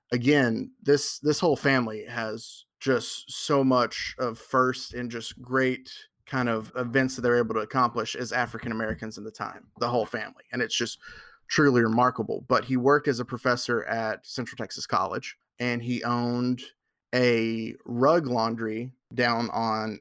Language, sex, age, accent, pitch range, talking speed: English, male, 30-49, American, 115-135 Hz, 160 wpm